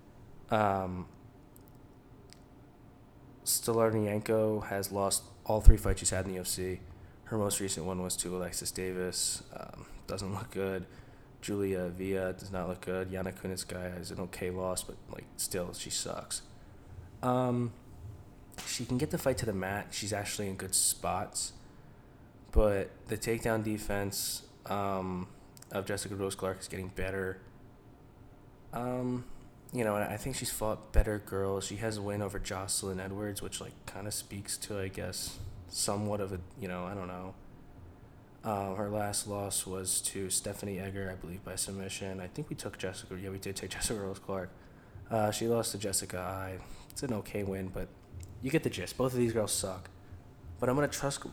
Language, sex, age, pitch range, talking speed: English, male, 20-39, 95-110 Hz, 170 wpm